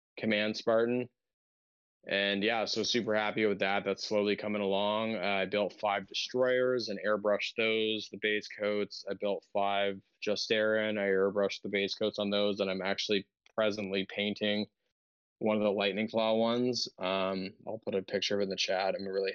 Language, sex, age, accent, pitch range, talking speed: English, male, 20-39, American, 100-110 Hz, 180 wpm